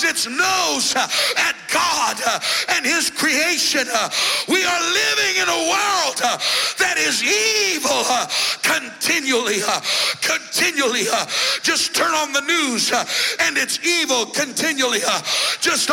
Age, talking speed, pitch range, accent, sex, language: 50-69, 105 wpm, 260-330 Hz, American, male, English